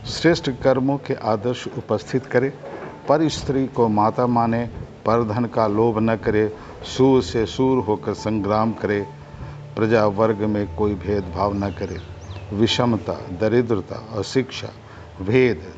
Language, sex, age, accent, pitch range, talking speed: Hindi, male, 50-69, native, 100-125 Hz, 135 wpm